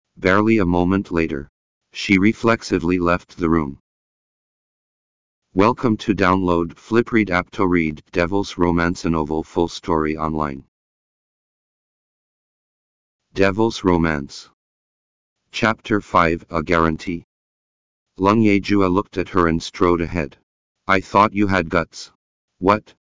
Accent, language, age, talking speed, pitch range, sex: American, Spanish, 40-59, 110 wpm, 80-100 Hz, male